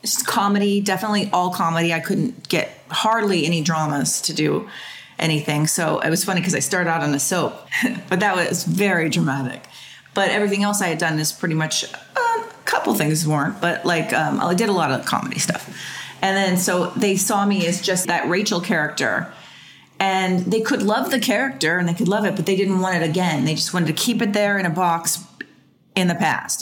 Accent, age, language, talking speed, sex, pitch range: American, 30-49, English, 210 wpm, female, 155-195 Hz